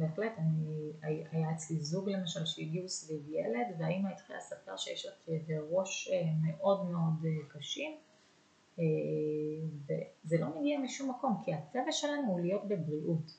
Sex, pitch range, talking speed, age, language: female, 160-195 Hz, 130 wpm, 30-49, Hebrew